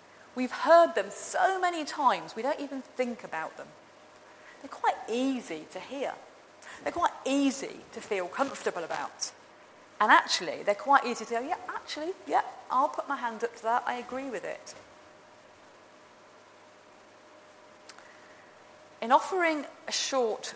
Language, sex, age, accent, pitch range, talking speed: English, female, 40-59, British, 220-285 Hz, 145 wpm